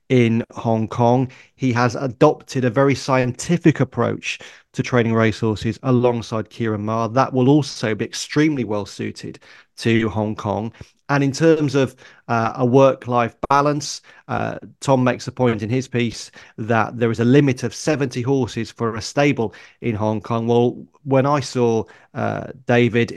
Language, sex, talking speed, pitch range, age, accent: English, male, 160 wpm, 115-135 Hz, 30-49, British